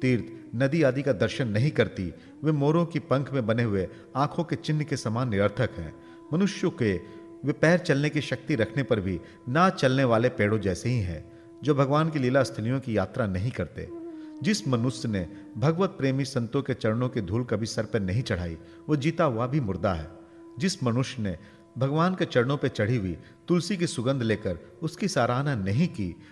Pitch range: 105-150 Hz